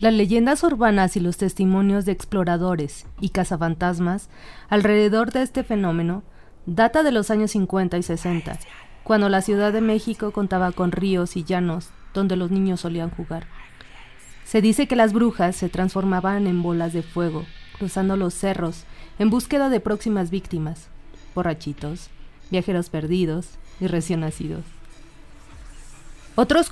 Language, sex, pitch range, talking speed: Spanish, female, 175-210 Hz, 140 wpm